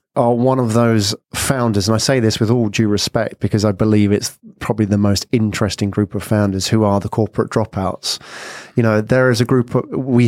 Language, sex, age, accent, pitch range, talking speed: English, male, 30-49, British, 105-125 Hz, 215 wpm